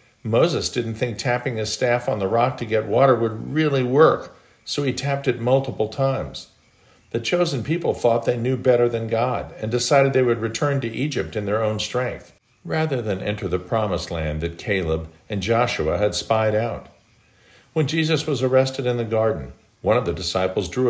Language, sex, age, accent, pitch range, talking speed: English, male, 50-69, American, 95-130 Hz, 190 wpm